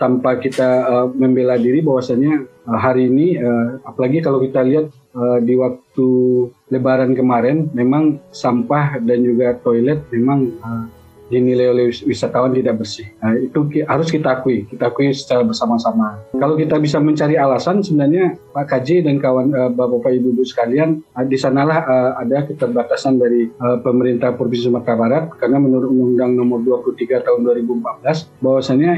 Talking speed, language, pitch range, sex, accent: 145 wpm, Indonesian, 120-140 Hz, male, native